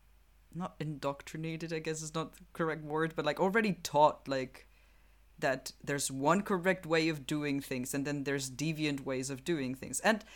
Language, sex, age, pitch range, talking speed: English, female, 30-49, 135-175 Hz, 180 wpm